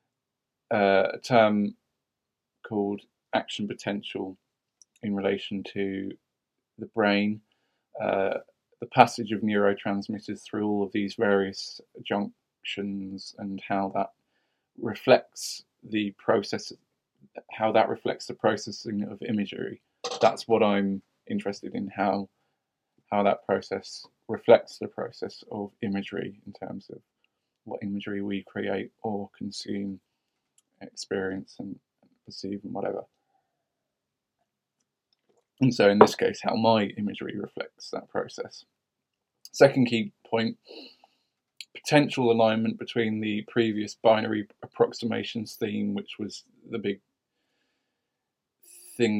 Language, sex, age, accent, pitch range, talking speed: English, male, 20-39, British, 100-110 Hz, 110 wpm